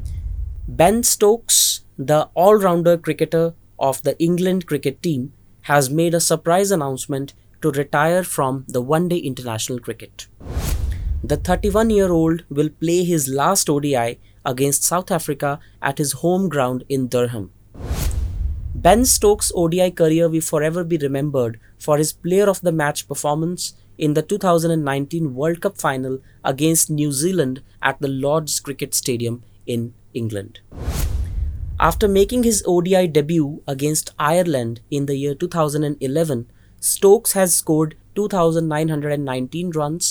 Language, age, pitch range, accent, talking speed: English, 20-39, 115-170 Hz, Indian, 120 wpm